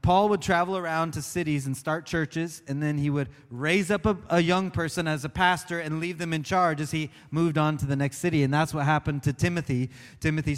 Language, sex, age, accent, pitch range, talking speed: English, male, 30-49, American, 155-190 Hz, 240 wpm